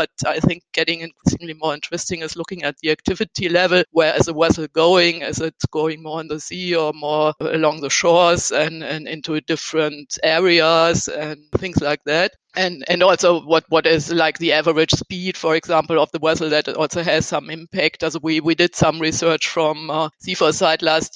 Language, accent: English, German